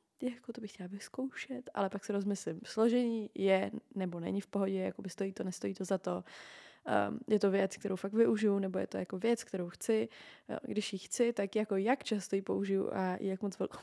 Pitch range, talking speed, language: 190-220 Hz, 215 wpm, Czech